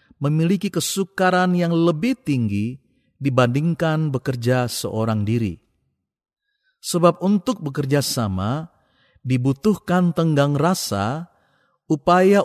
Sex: male